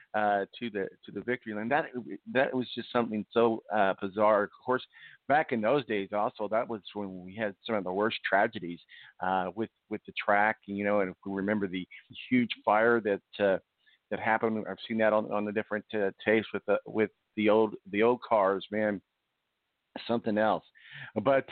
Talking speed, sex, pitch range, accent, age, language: 200 wpm, male, 105-125 Hz, American, 50-69, English